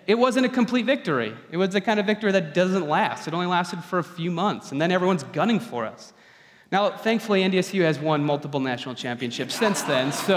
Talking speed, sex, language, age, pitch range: 220 wpm, male, English, 30-49, 155-215 Hz